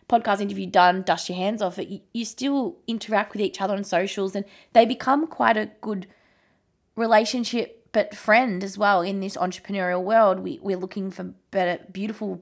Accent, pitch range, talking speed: Australian, 175-215 Hz, 180 wpm